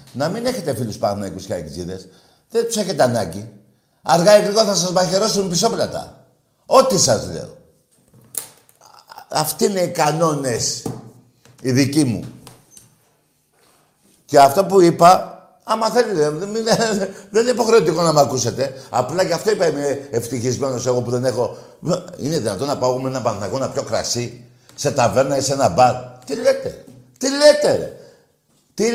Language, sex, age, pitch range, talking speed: Greek, male, 60-79, 125-205 Hz, 145 wpm